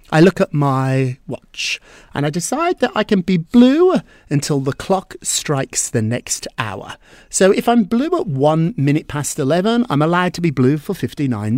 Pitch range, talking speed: 130-195 Hz, 185 wpm